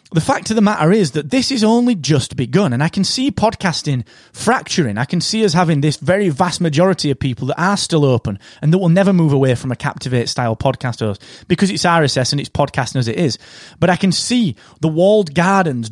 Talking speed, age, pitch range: 225 wpm, 30-49, 130-190 Hz